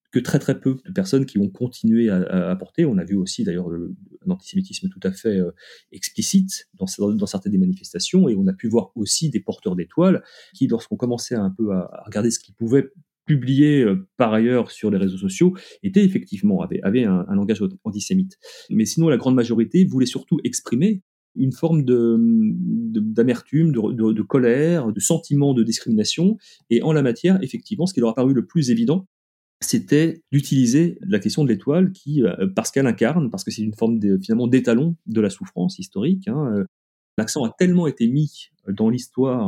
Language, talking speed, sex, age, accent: French, 200 wpm, male, 30-49, French